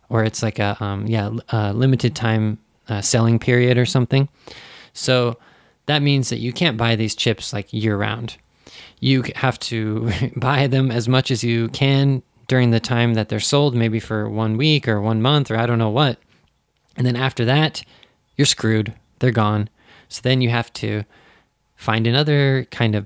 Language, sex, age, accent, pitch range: Japanese, male, 20-39, American, 110-130 Hz